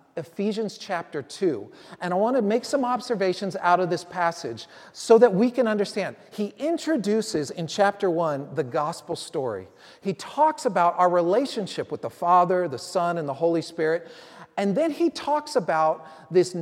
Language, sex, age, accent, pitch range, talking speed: English, male, 40-59, American, 165-220 Hz, 170 wpm